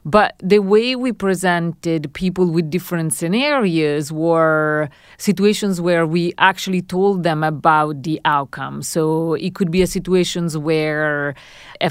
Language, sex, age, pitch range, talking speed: English, female, 40-59, 155-185 Hz, 135 wpm